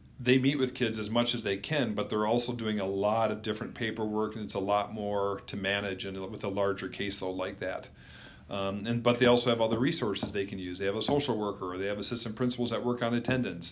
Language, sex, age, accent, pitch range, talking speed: English, male, 40-59, American, 100-125 Hz, 245 wpm